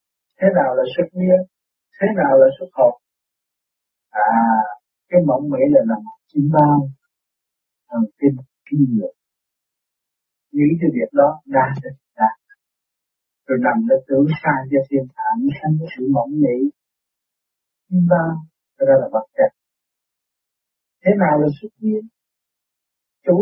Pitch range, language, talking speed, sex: 140-205 Hz, Vietnamese, 135 wpm, male